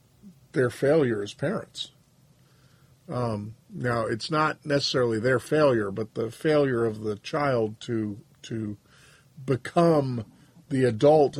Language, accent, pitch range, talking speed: English, American, 130-160 Hz, 115 wpm